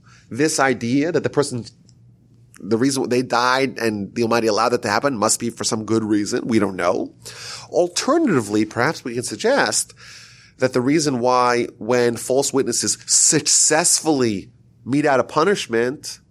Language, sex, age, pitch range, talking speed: English, male, 30-49, 105-130 Hz, 155 wpm